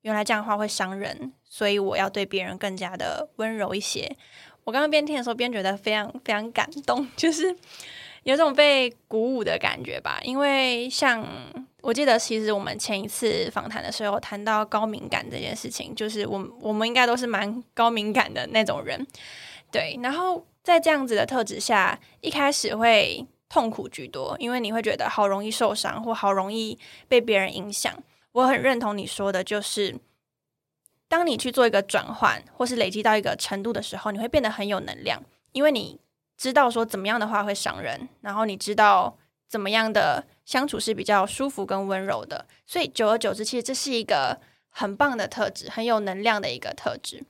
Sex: female